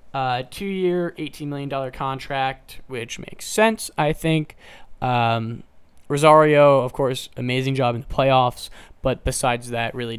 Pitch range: 120-150 Hz